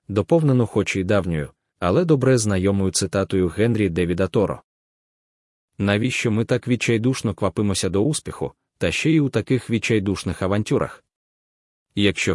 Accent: native